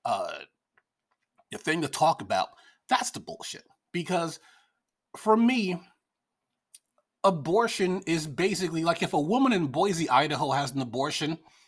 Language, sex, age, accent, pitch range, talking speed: English, male, 30-49, American, 135-200 Hz, 130 wpm